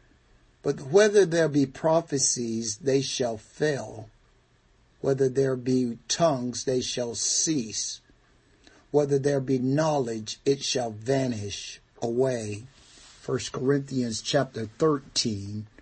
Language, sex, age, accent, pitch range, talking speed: English, male, 50-69, American, 115-155 Hz, 100 wpm